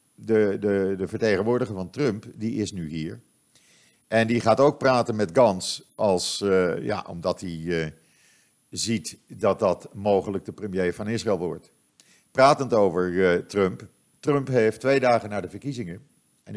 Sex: male